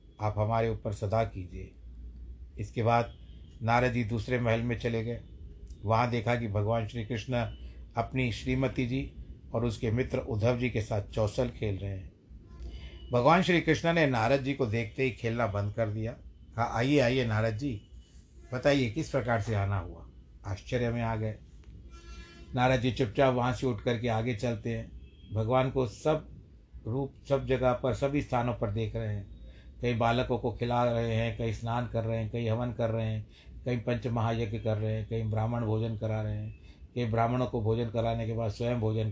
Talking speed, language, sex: 185 wpm, Hindi, male